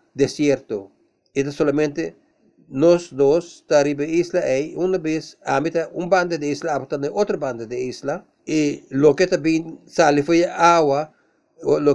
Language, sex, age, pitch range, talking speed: English, male, 50-69, 145-175 Hz, 150 wpm